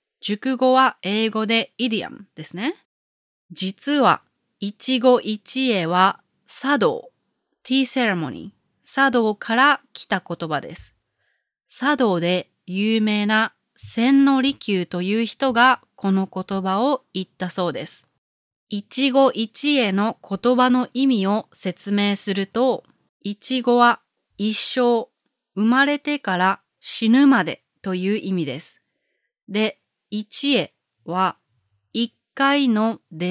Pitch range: 185-255 Hz